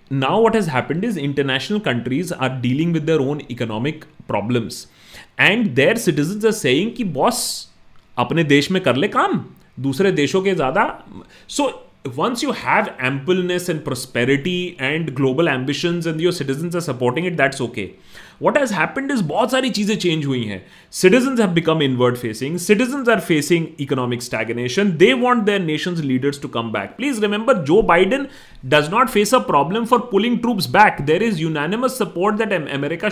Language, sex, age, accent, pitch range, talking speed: Hindi, male, 30-49, native, 135-205 Hz, 175 wpm